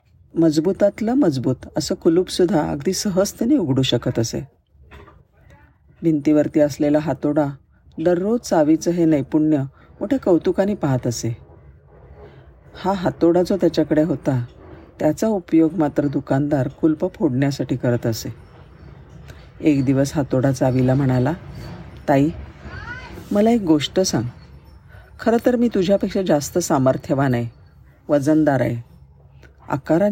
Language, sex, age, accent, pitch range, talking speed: Marathi, female, 50-69, native, 125-175 Hz, 105 wpm